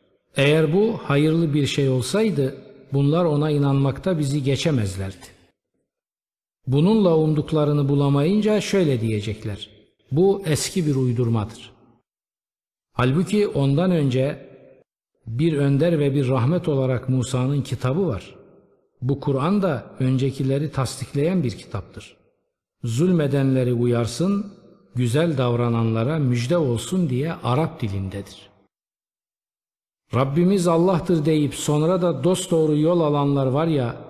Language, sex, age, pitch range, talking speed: Turkish, male, 50-69, 120-155 Hz, 100 wpm